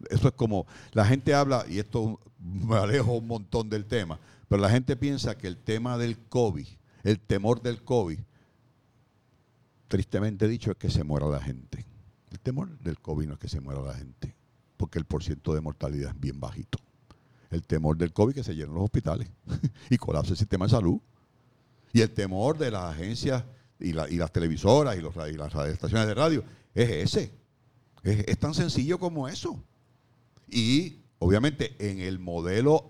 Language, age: Spanish, 60-79